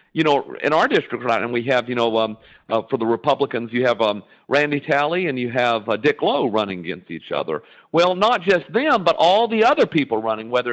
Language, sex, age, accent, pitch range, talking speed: English, male, 50-69, American, 125-175 Hz, 235 wpm